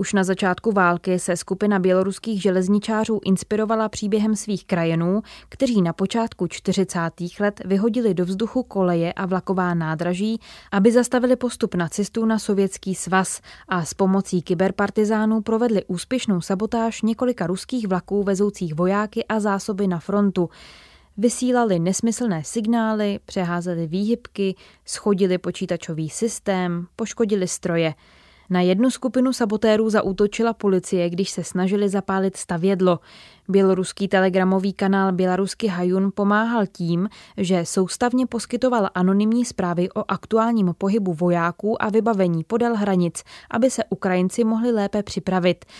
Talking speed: 125 wpm